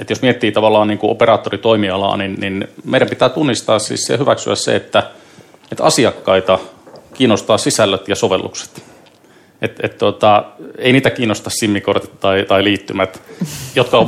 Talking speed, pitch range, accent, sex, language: 150 wpm, 95-110 Hz, native, male, Finnish